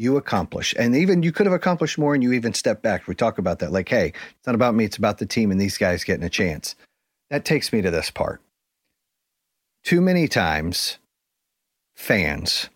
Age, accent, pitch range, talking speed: 40-59, American, 105-150 Hz, 205 wpm